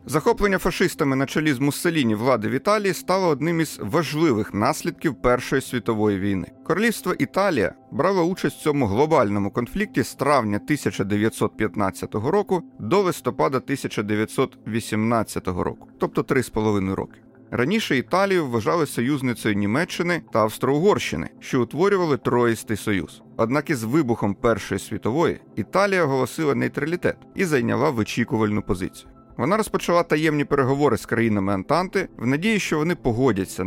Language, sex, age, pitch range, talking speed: Ukrainian, male, 30-49, 110-160 Hz, 125 wpm